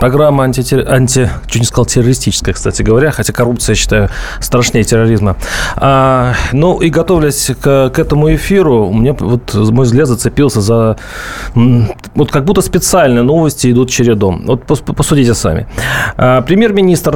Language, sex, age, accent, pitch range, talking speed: Russian, male, 30-49, native, 120-150 Hz, 145 wpm